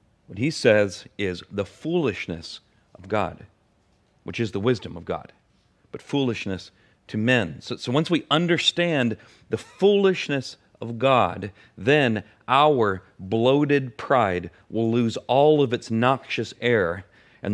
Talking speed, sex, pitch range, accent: 135 wpm, male, 100-130 Hz, American